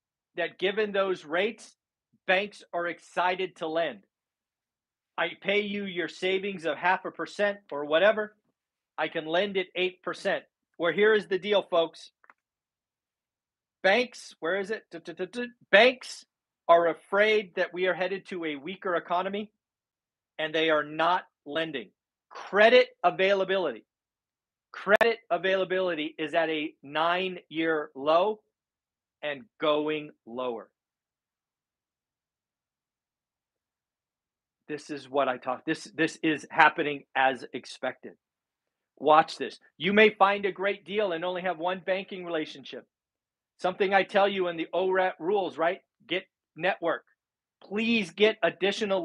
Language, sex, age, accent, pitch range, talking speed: English, male, 40-59, American, 160-195 Hz, 125 wpm